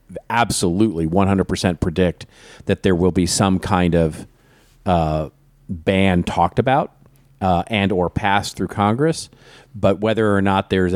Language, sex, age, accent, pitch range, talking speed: English, male, 40-59, American, 85-100 Hz, 135 wpm